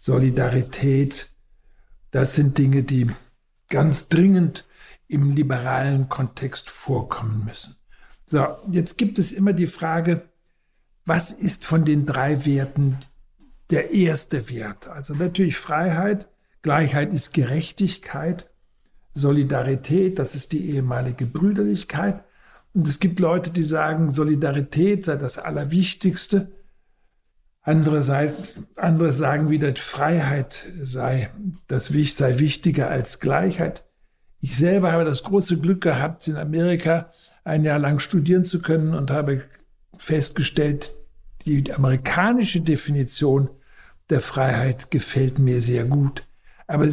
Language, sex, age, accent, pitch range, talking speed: German, male, 60-79, German, 140-175 Hz, 115 wpm